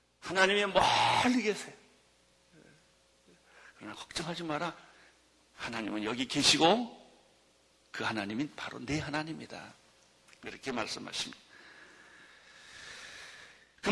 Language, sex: Korean, male